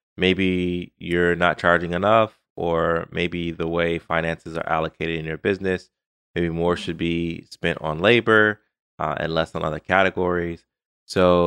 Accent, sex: American, male